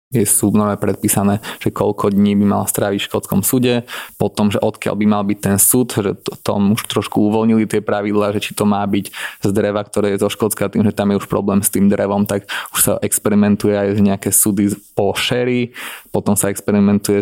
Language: Slovak